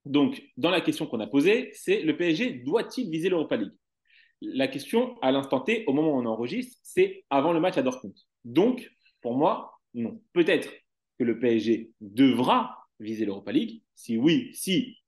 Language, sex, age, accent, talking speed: French, male, 30-49, French, 180 wpm